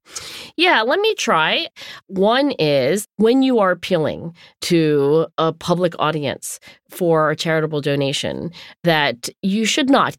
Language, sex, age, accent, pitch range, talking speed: English, female, 40-59, American, 155-215 Hz, 130 wpm